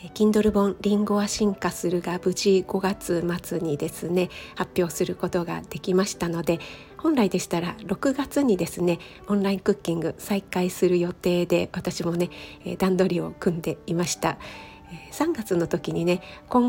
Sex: female